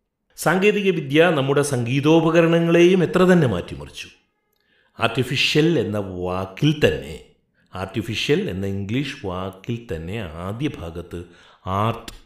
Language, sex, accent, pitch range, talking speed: Malayalam, male, native, 90-130 Hz, 85 wpm